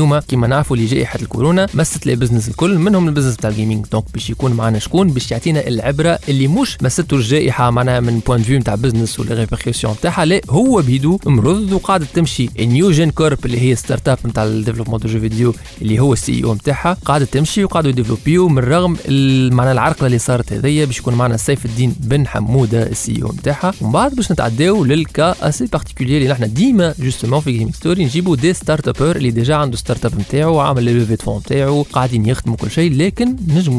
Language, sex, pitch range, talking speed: Arabic, male, 120-155 Hz, 200 wpm